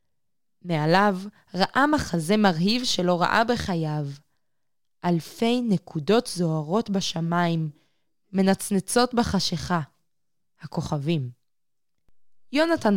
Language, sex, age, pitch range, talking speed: Hebrew, female, 20-39, 170-225 Hz, 70 wpm